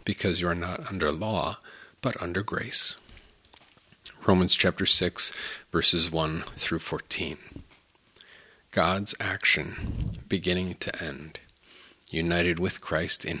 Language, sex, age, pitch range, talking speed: English, male, 40-59, 85-105 Hz, 110 wpm